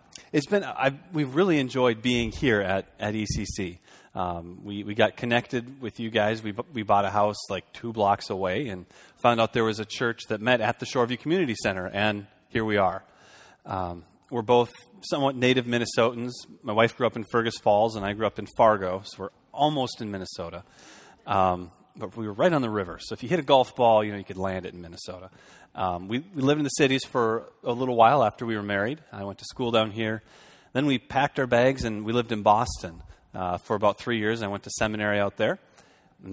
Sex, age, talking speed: male, 30-49, 230 wpm